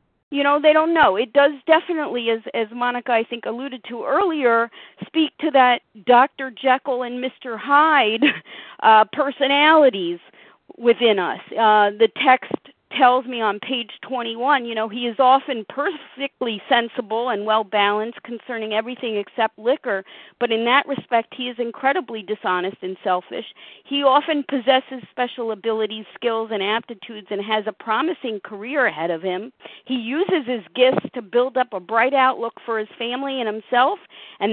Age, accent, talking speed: 40-59, American, 160 wpm